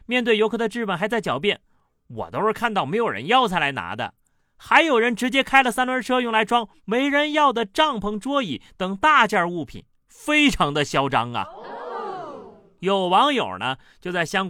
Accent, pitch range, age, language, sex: native, 140-225 Hz, 30-49, Chinese, male